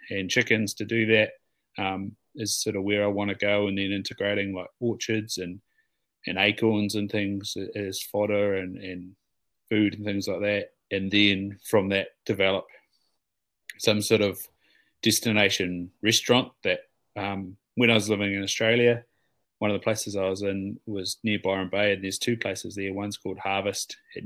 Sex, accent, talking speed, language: male, Australian, 175 wpm, English